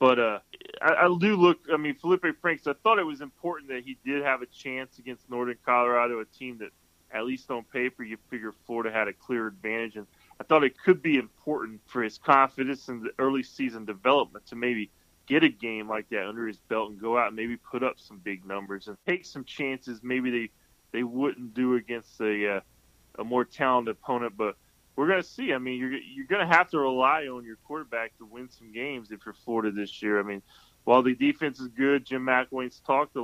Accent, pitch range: American, 110-135 Hz